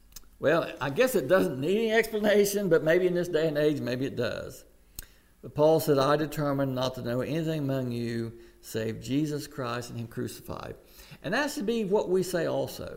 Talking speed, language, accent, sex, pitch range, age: 200 wpm, English, American, male, 130-190 Hz, 60-79